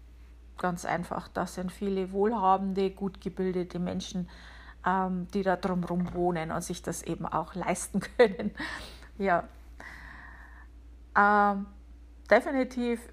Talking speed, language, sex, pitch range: 110 wpm, German, female, 165-210 Hz